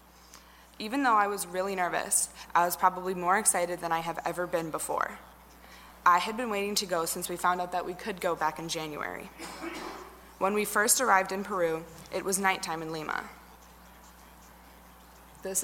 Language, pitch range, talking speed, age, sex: English, 160-190 Hz, 175 wpm, 20-39, female